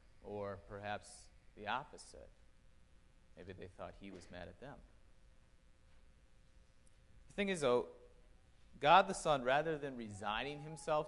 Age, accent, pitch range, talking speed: 30-49, American, 95-145 Hz, 125 wpm